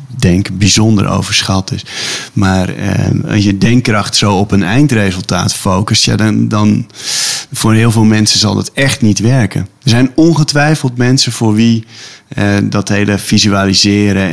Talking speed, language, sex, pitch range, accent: 145 wpm, Dutch, male, 100-115 Hz, Dutch